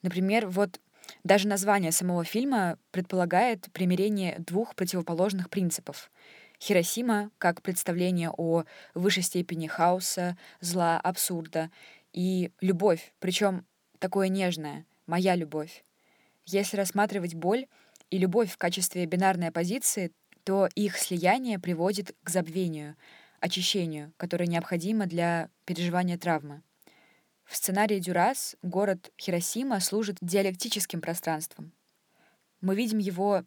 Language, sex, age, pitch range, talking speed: Russian, female, 20-39, 175-200 Hz, 105 wpm